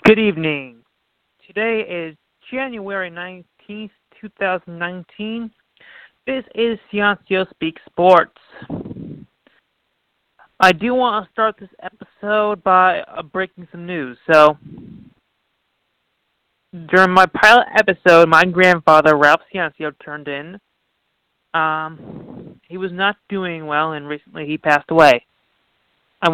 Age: 30-49